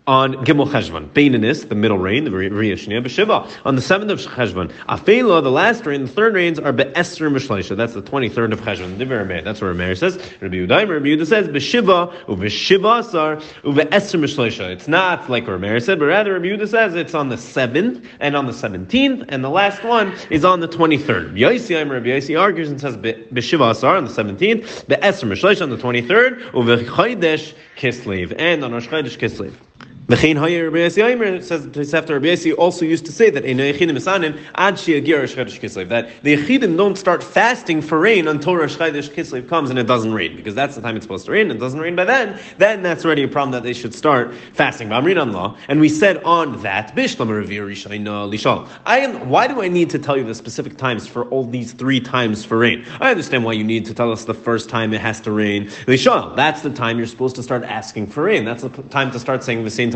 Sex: male